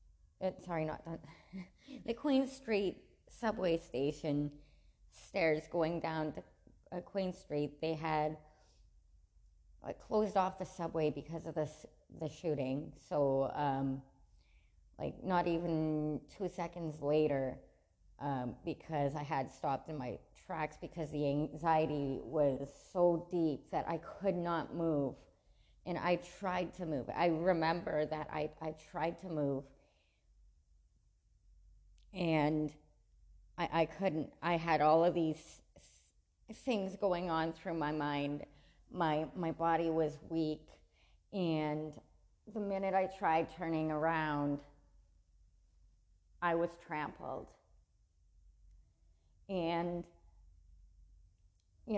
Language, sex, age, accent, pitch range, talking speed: English, female, 30-49, American, 110-170 Hz, 115 wpm